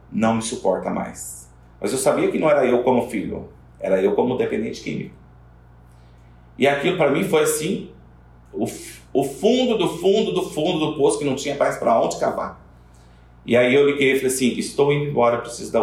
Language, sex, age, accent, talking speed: Portuguese, male, 40-59, Brazilian, 195 wpm